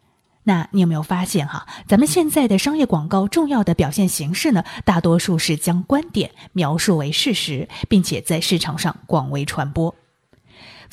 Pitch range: 165-235 Hz